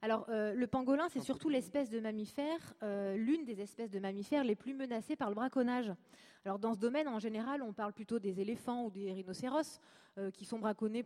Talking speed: 210 wpm